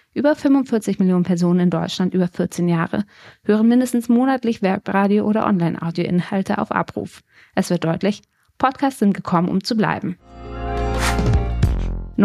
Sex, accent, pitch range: female, German, 180-225 Hz